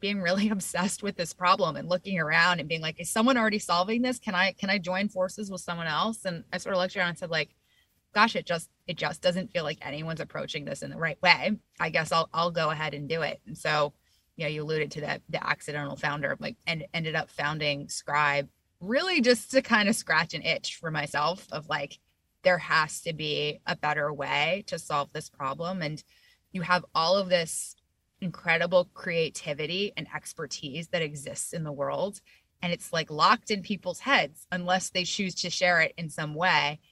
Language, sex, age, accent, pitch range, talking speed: English, female, 20-39, American, 155-190 Hz, 215 wpm